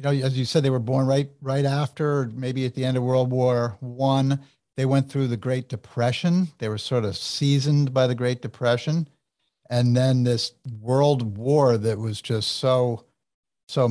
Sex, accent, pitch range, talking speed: male, American, 115-140 Hz, 190 wpm